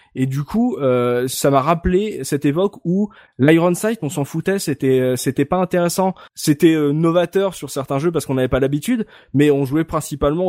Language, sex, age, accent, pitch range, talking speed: French, male, 20-39, French, 130-185 Hz, 195 wpm